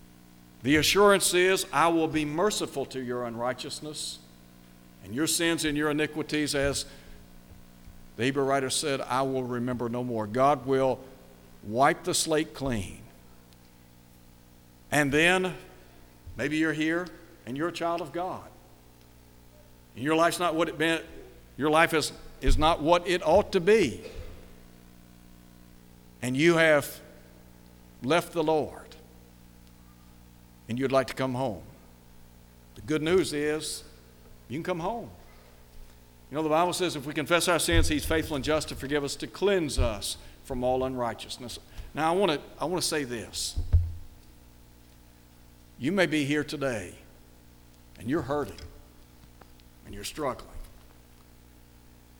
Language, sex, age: English, male, 60-79